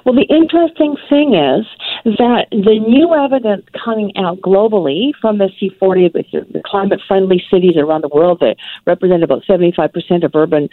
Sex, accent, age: female, American, 50-69